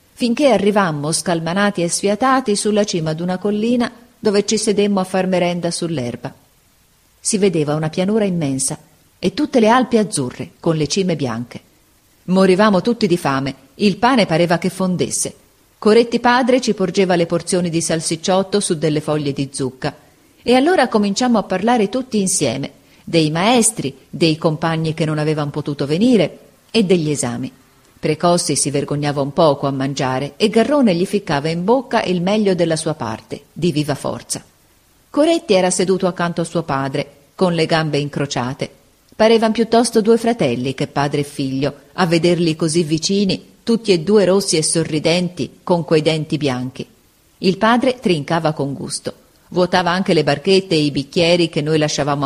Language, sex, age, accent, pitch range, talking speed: Italian, female, 40-59, native, 145-200 Hz, 160 wpm